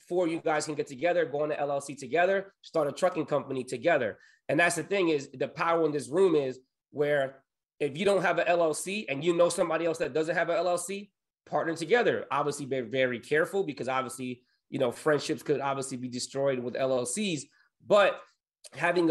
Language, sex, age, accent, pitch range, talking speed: English, male, 30-49, American, 140-175 Hz, 195 wpm